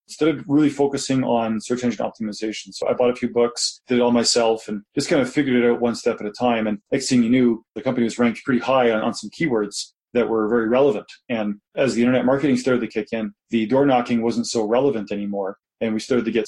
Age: 30-49